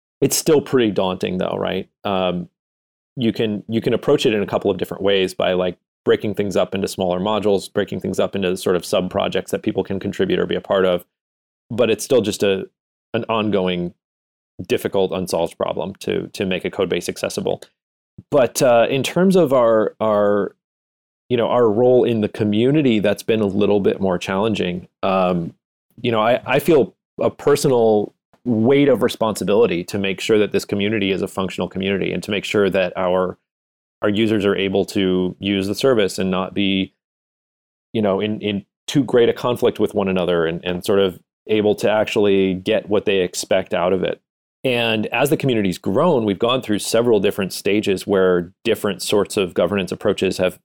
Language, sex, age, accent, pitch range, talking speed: English, male, 30-49, American, 90-110 Hz, 195 wpm